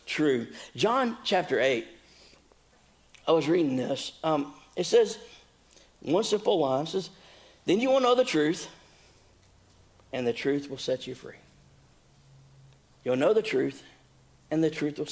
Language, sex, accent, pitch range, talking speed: English, male, American, 120-170 Hz, 145 wpm